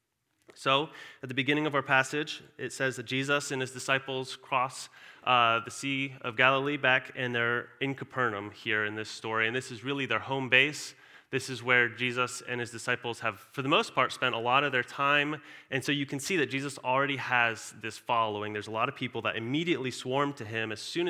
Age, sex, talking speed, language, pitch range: 30-49, male, 220 wpm, English, 115-140 Hz